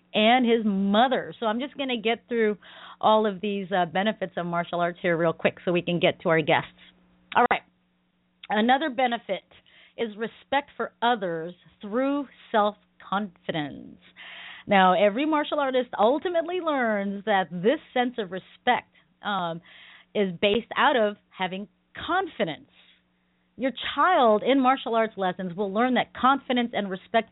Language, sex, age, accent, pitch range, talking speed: English, female, 40-59, American, 170-235 Hz, 150 wpm